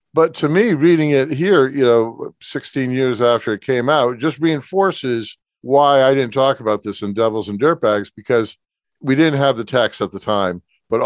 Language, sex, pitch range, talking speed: English, male, 105-130 Hz, 200 wpm